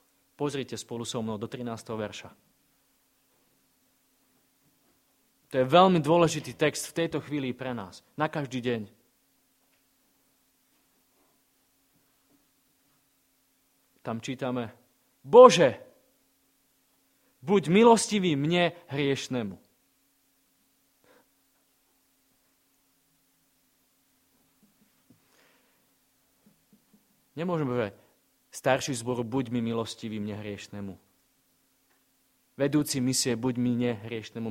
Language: Slovak